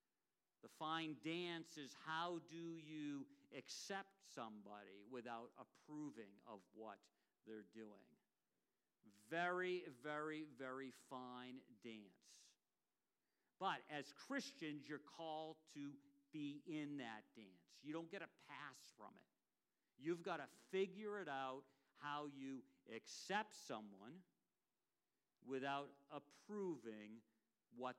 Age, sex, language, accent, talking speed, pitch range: 50-69, male, English, American, 105 wpm, 135-175 Hz